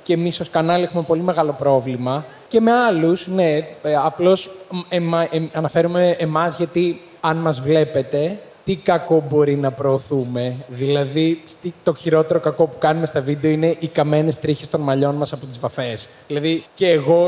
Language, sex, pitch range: Greek, male, 150-175 Hz